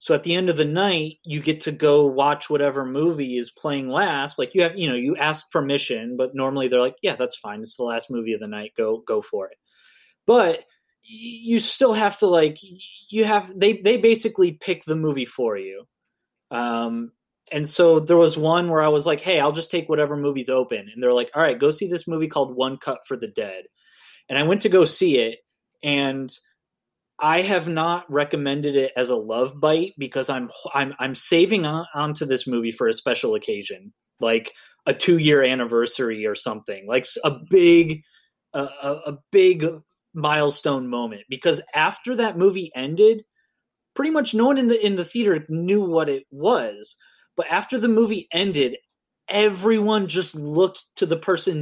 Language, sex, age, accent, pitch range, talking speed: English, male, 20-39, American, 135-195 Hz, 195 wpm